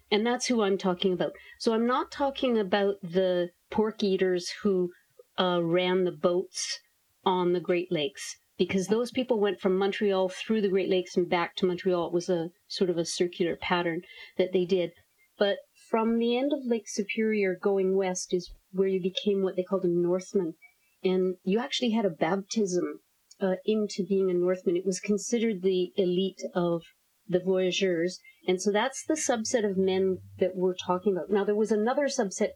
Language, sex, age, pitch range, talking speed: English, female, 50-69, 185-215 Hz, 185 wpm